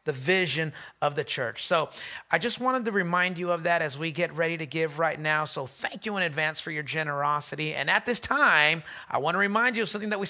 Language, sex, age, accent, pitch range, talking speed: English, male, 30-49, American, 175-245 Hz, 250 wpm